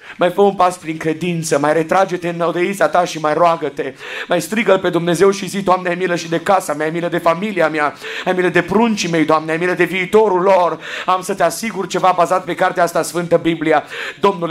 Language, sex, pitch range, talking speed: Romanian, male, 175-205 Hz, 225 wpm